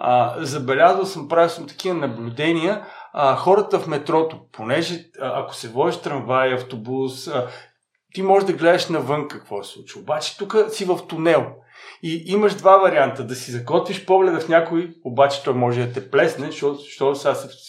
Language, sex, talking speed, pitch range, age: Bulgarian, male, 175 wpm, 130-175 Hz, 50-69